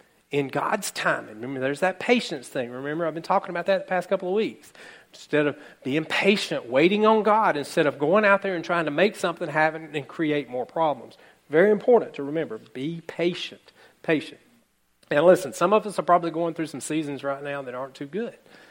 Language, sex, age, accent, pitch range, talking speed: English, male, 40-59, American, 145-195 Hz, 210 wpm